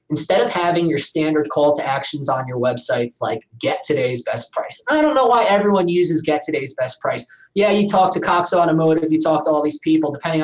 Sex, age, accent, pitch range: male, 20-39, American, 145-175 Hz